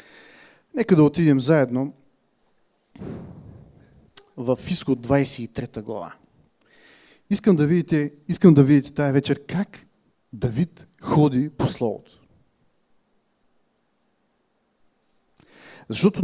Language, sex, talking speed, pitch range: English, male, 80 wpm, 135-175 Hz